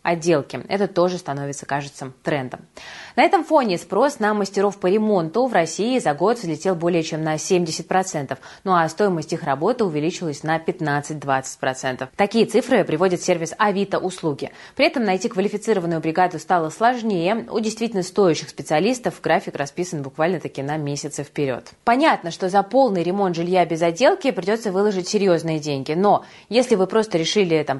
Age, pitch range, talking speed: 20-39, 160-205 Hz, 155 wpm